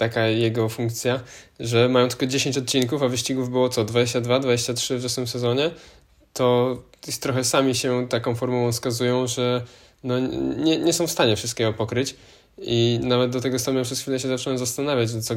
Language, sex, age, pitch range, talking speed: Polish, male, 20-39, 115-130 Hz, 175 wpm